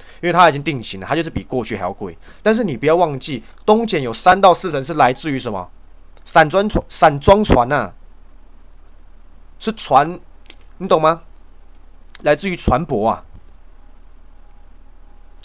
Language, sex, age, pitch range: Chinese, male, 20-39, 80-130 Hz